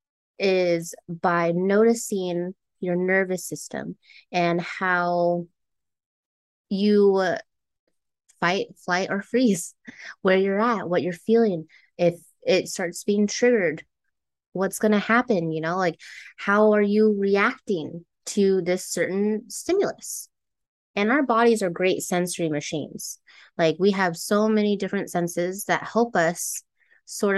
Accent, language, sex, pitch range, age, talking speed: American, English, female, 170-210 Hz, 20-39, 125 wpm